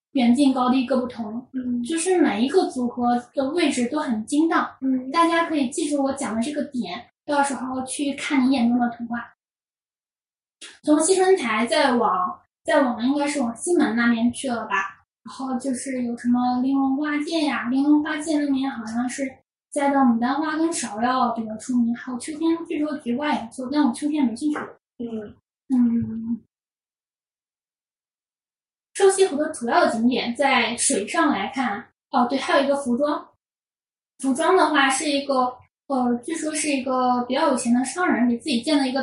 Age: 10-29